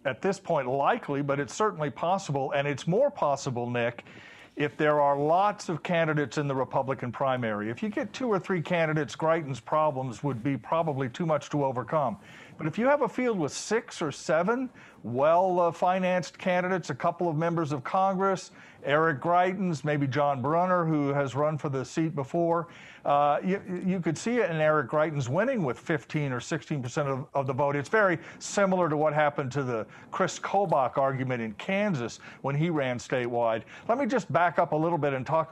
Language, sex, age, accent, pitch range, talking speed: English, male, 50-69, American, 135-170 Hz, 195 wpm